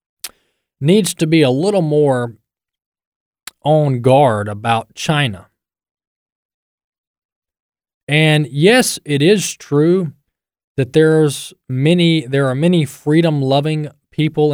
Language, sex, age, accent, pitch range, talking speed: English, male, 20-39, American, 115-150 Hz, 100 wpm